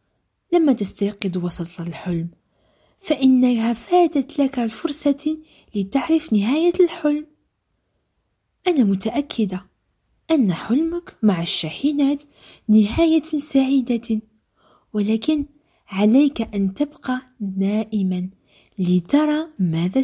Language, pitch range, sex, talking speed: French, 195-275 Hz, female, 80 wpm